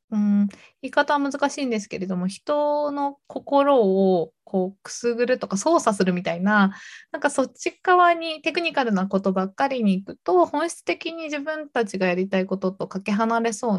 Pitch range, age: 200-295 Hz, 20-39